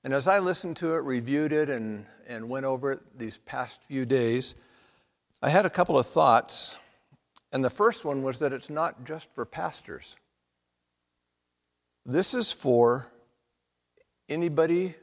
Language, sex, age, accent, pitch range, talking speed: English, male, 60-79, American, 105-150 Hz, 150 wpm